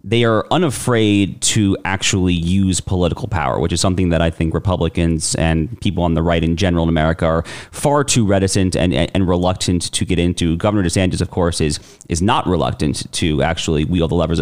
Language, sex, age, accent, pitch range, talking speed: English, male, 30-49, American, 85-105 Hz, 195 wpm